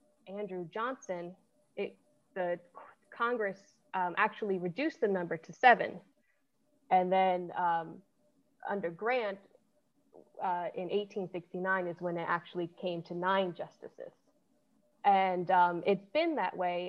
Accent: American